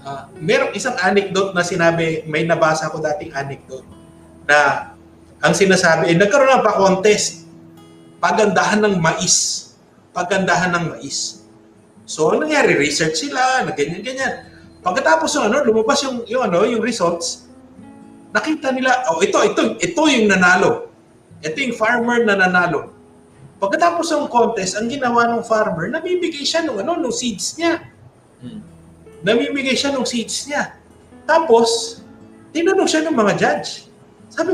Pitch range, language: 175-250 Hz, Filipino